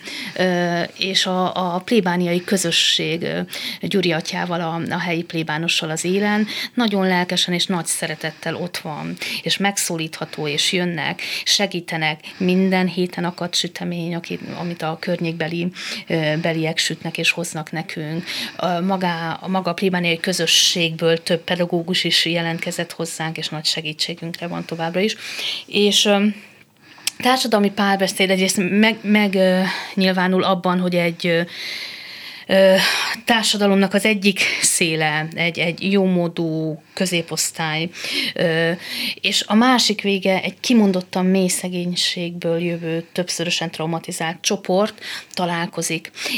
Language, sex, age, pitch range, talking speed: Hungarian, female, 30-49, 165-195 Hz, 115 wpm